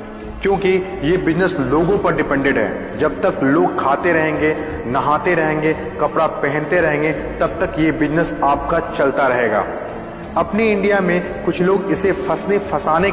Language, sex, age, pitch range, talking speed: Hindi, male, 30-49, 155-185 Hz, 140 wpm